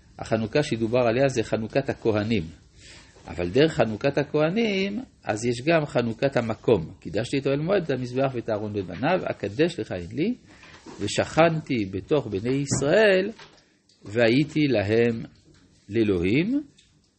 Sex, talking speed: male, 120 wpm